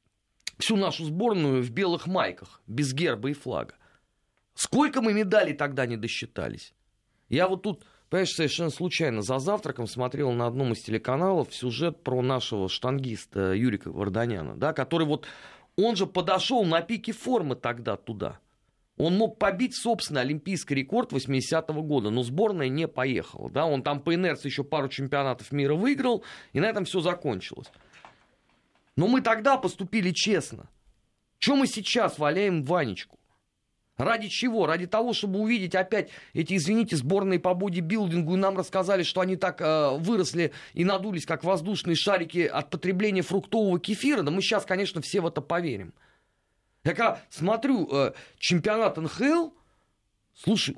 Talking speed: 150 wpm